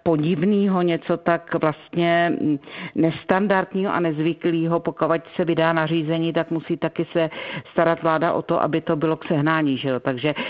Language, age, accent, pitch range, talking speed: Czech, 50-69, native, 155-170 Hz, 150 wpm